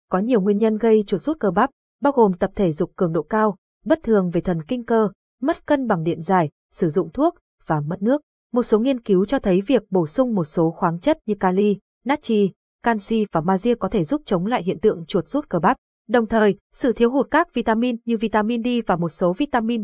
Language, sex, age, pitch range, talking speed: Vietnamese, female, 20-39, 185-245 Hz, 235 wpm